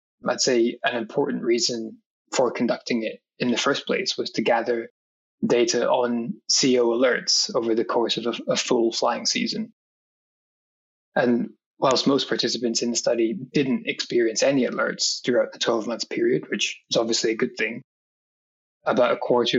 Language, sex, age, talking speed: English, male, 20-39, 160 wpm